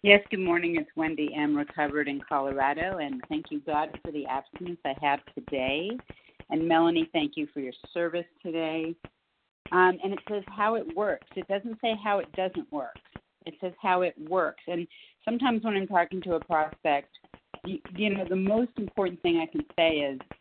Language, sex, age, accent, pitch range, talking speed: English, female, 50-69, American, 150-190 Hz, 190 wpm